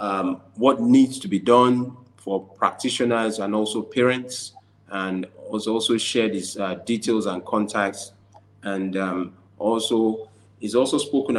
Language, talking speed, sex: English, 135 wpm, male